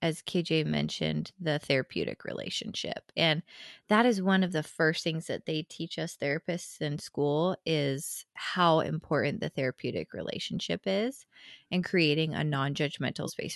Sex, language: female, English